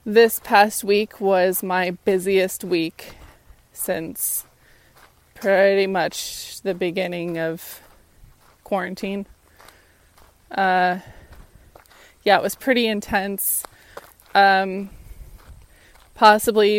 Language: English